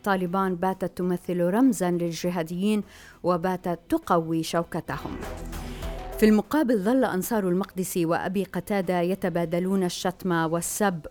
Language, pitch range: Arabic, 175-200 Hz